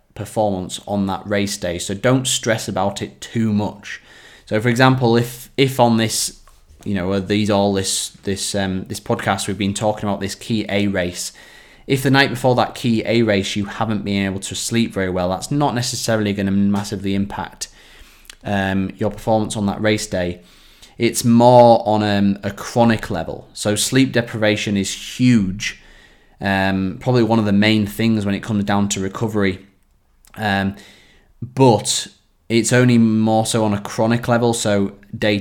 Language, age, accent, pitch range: English, 20-39, British, 100-115 Hz